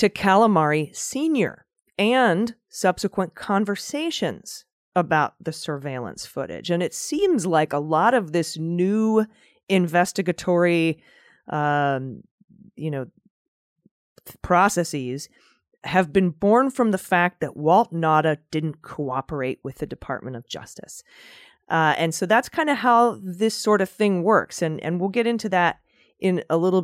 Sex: female